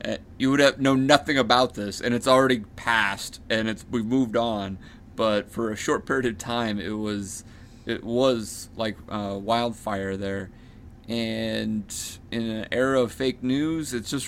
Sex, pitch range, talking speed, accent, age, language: male, 100-120 Hz, 170 wpm, American, 30-49, English